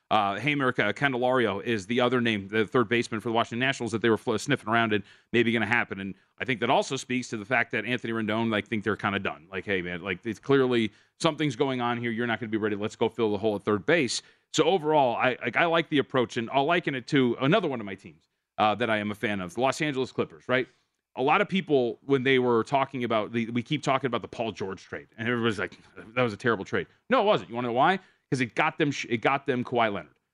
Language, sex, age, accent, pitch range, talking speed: English, male, 30-49, American, 115-140 Hz, 275 wpm